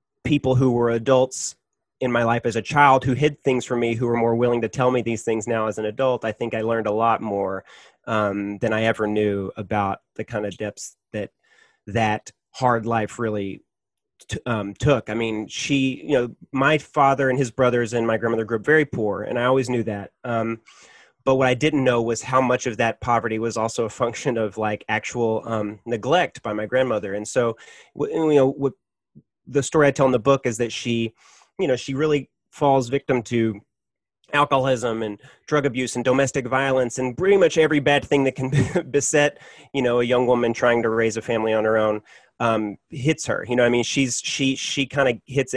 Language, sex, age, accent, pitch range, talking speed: English, male, 30-49, American, 110-130 Hz, 215 wpm